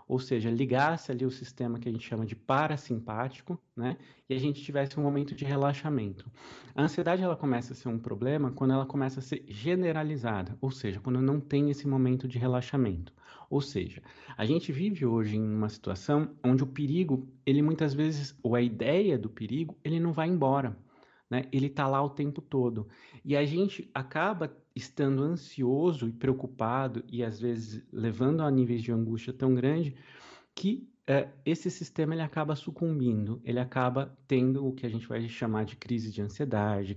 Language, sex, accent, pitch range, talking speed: Portuguese, male, Brazilian, 120-145 Hz, 180 wpm